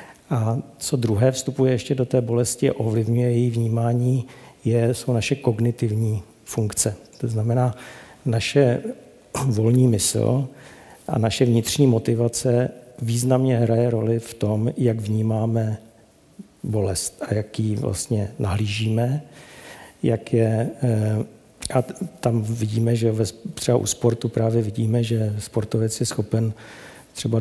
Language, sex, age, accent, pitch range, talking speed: Czech, male, 50-69, native, 110-120 Hz, 125 wpm